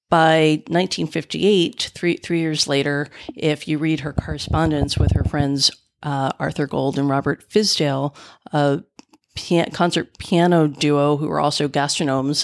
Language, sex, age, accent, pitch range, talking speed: English, female, 40-59, American, 145-165 Hz, 135 wpm